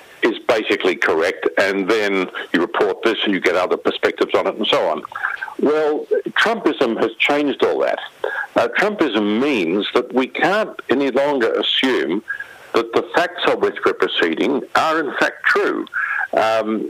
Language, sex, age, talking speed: English, male, 60-79, 160 wpm